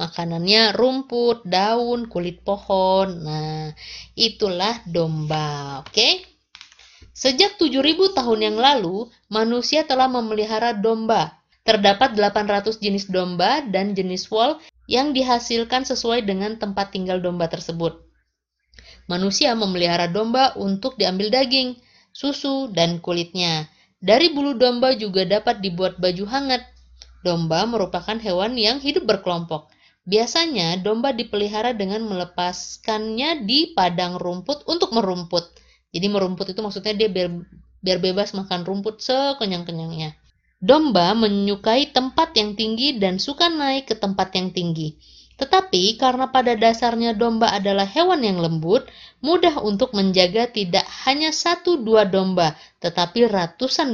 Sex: female